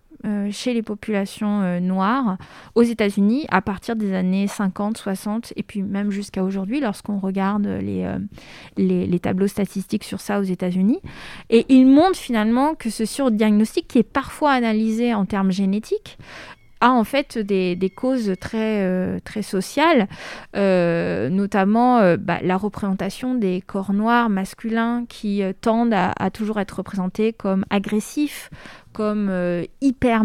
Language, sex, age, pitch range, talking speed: French, female, 20-39, 190-230 Hz, 150 wpm